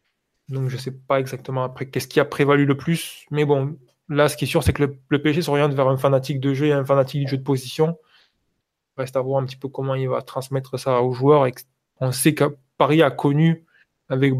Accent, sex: French, male